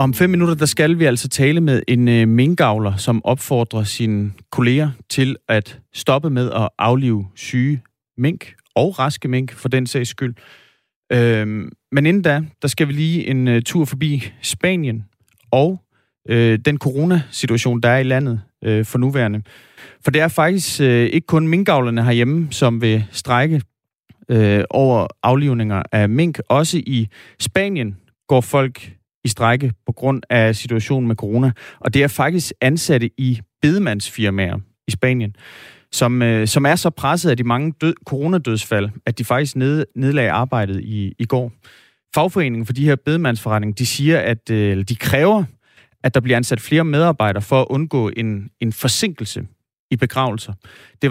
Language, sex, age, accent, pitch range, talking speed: Danish, male, 30-49, native, 115-145 Hz, 160 wpm